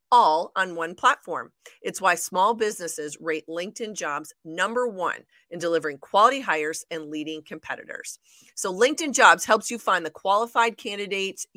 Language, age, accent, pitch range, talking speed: English, 40-59, American, 175-230 Hz, 150 wpm